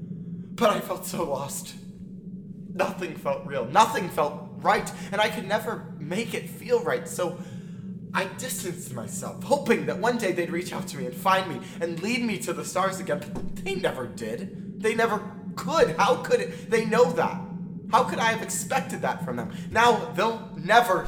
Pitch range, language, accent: 180-190 Hz, English, American